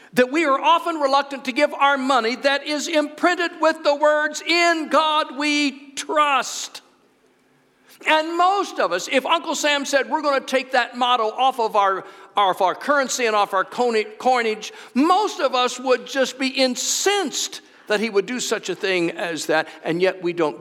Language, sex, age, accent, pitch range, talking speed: English, male, 60-79, American, 195-300 Hz, 180 wpm